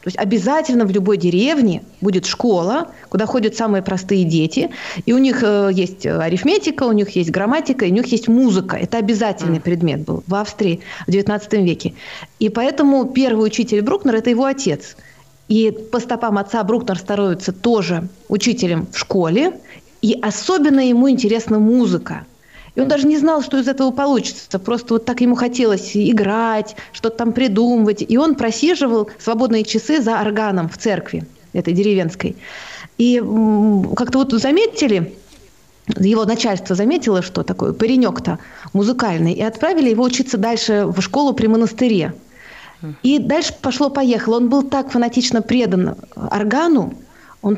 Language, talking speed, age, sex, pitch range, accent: Russian, 150 wpm, 30-49, female, 200-250 Hz, native